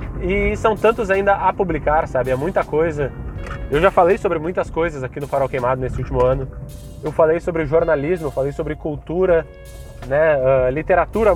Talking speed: 175 wpm